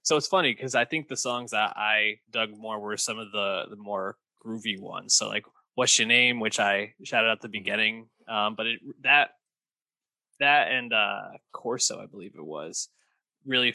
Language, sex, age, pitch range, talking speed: English, male, 20-39, 105-130 Hz, 190 wpm